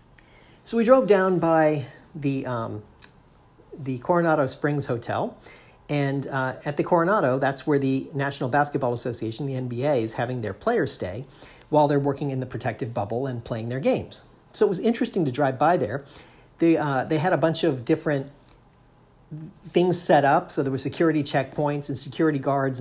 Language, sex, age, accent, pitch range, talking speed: English, male, 40-59, American, 130-155 Hz, 175 wpm